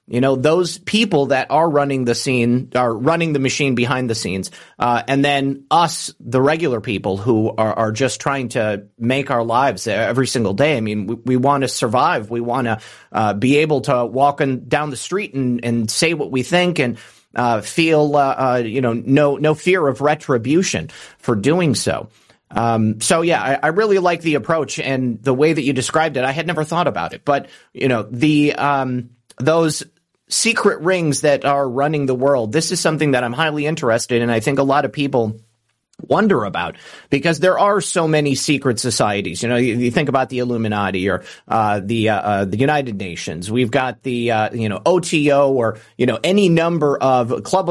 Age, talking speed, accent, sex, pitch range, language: 30-49, 205 wpm, American, male, 120-150 Hz, English